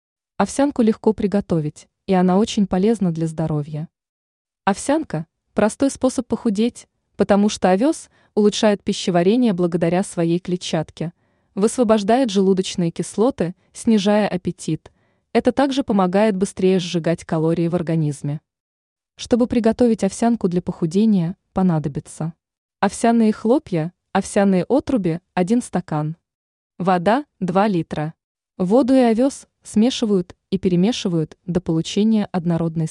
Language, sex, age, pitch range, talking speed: Russian, female, 20-39, 170-220 Hz, 110 wpm